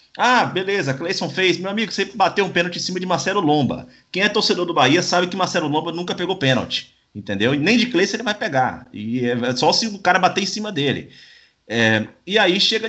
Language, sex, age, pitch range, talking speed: Portuguese, male, 30-49, 125-195 Hz, 230 wpm